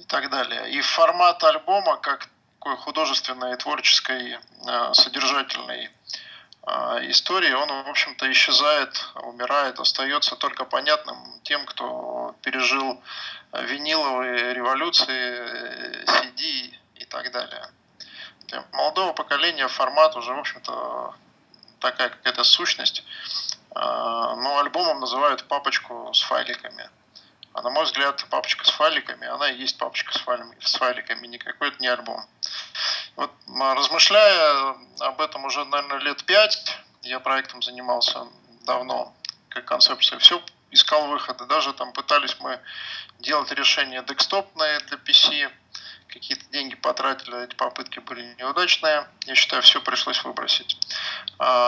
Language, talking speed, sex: Russian, 115 wpm, male